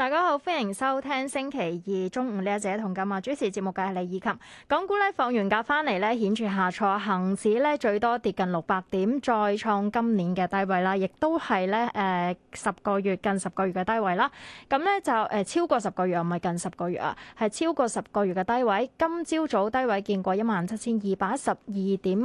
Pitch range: 195-255 Hz